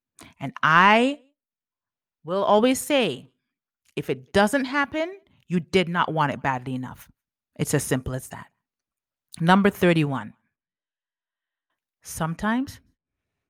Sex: female